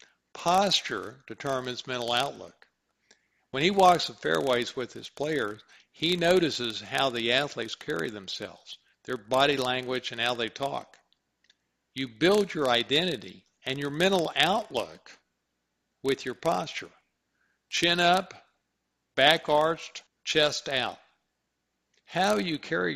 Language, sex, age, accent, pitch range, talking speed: English, male, 50-69, American, 115-155 Hz, 120 wpm